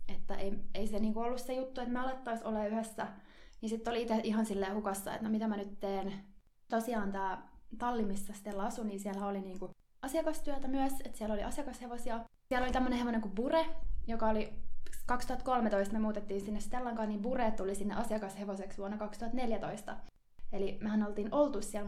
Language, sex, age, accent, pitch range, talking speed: Finnish, female, 20-39, native, 210-255 Hz, 185 wpm